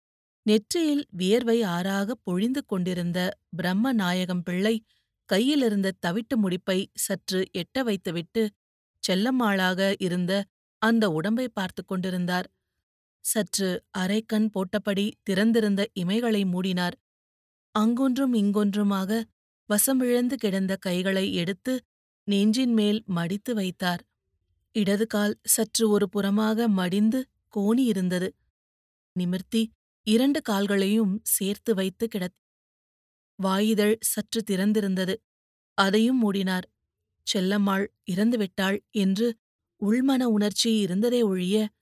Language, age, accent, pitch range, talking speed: Tamil, 30-49, native, 185-225 Hz, 85 wpm